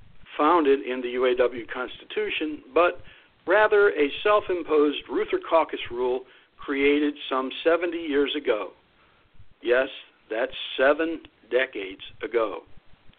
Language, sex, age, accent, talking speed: English, male, 60-79, American, 100 wpm